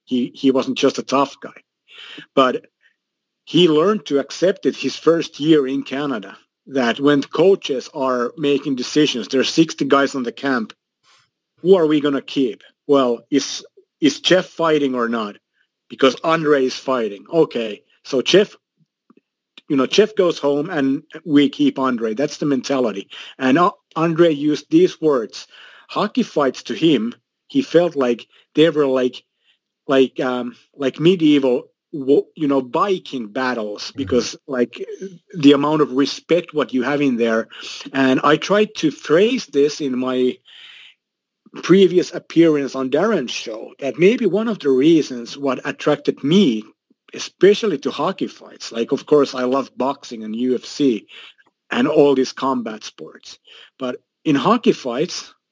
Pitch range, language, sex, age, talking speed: 130-170 Hz, English, male, 50-69, 150 wpm